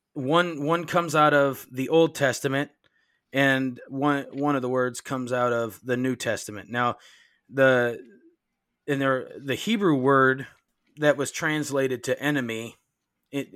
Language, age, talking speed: English, 20-39, 140 wpm